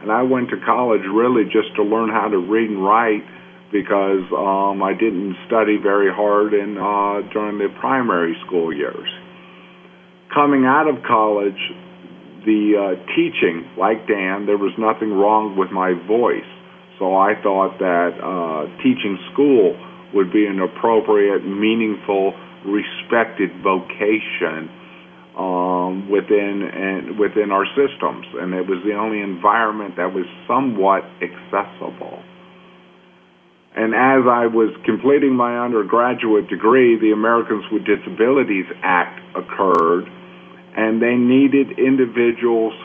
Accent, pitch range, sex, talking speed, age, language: American, 100-120 Hz, male, 125 wpm, 50-69, English